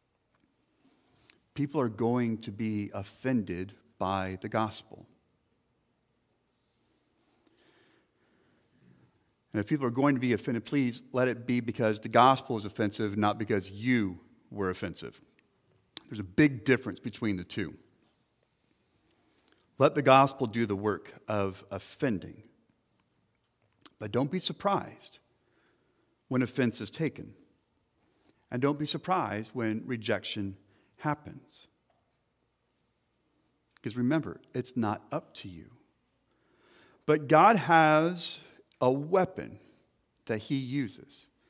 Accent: American